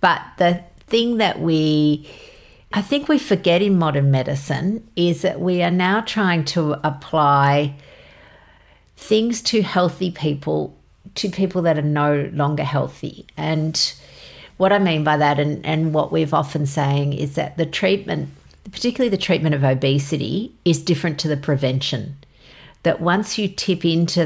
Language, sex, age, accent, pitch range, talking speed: English, female, 50-69, Australian, 150-190 Hz, 155 wpm